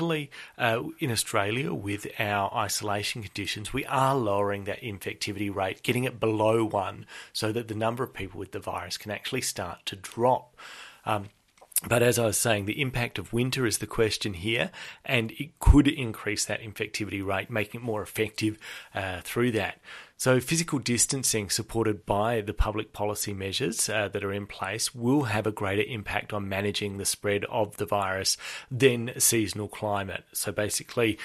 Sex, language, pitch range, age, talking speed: male, English, 100-120 Hz, 30-49, 175 wpm